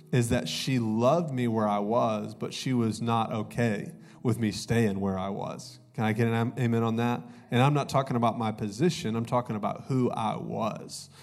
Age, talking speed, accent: 30-49, 210 wpm, American